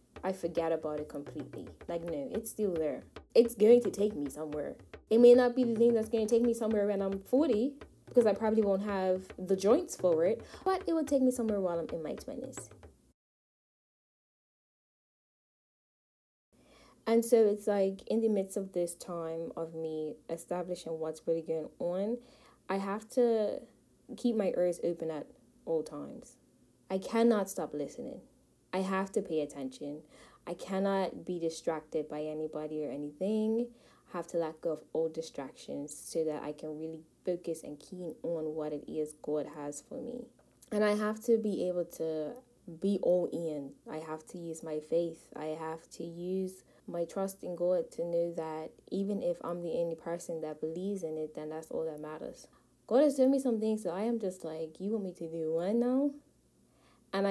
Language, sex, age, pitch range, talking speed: English, female, 10-29, 155-215 Hz, 190 wpm